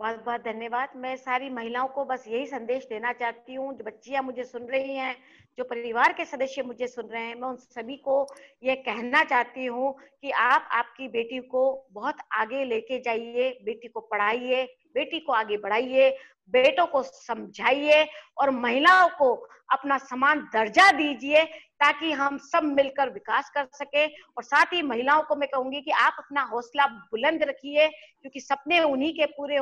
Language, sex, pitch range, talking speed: Hindi, female, 255-310 Hz, 170 wpm